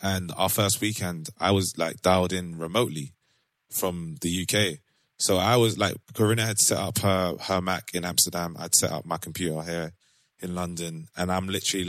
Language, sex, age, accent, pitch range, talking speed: English, male, 20-39, British, 85-110 Hz, 185 wpm